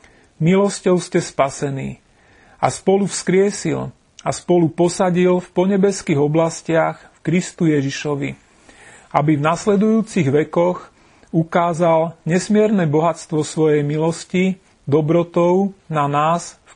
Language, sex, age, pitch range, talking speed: Slovak, male, 40-59, 155-180 Hz, 100 wpm